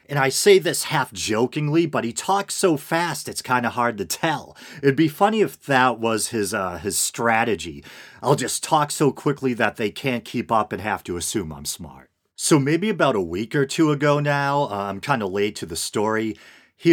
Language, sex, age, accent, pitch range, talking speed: English, male, 40-59, American, 105-145 Hz, 215 wpm